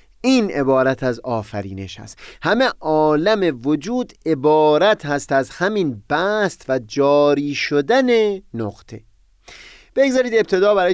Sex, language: male, Persian